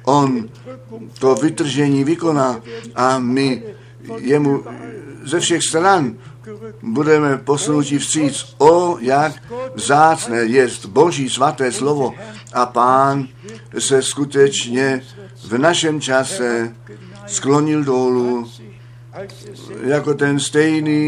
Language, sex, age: Czech, male, 50-69